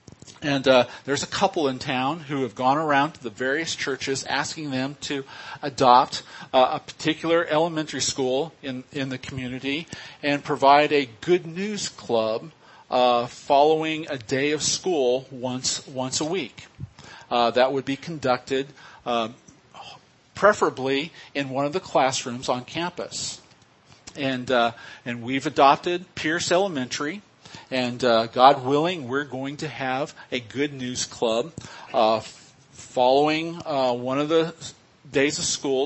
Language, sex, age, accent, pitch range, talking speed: English, male, 40-59, American, 130-160 Hz, 145 wpm